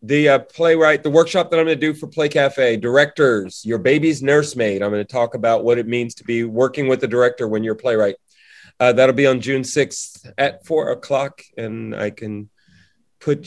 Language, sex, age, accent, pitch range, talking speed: English, male, 40-59, American, 120-155 Hz, 215 wpm